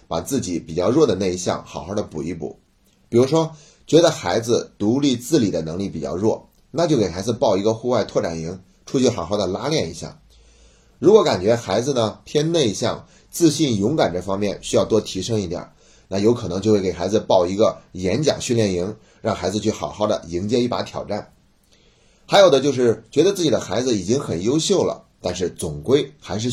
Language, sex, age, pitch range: Chinese, male, 30-49, 90-125 Hz